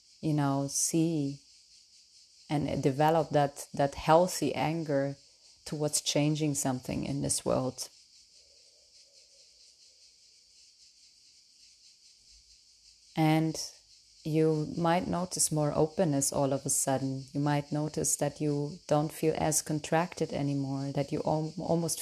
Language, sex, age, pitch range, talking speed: English, female, 30-49, 135-160 Hz, 105 wpm